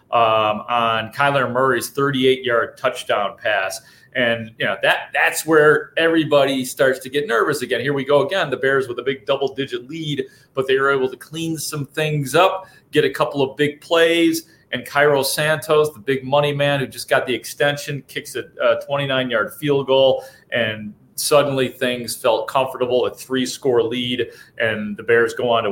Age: 30-49